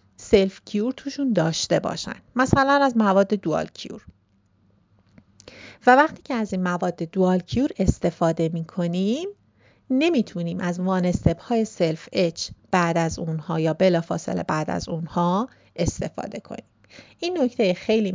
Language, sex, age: English, female, 40-59